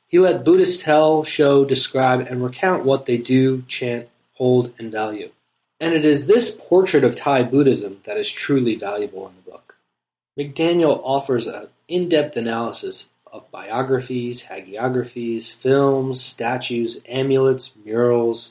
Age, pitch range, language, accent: 20-39, 115-150 Hz, English, American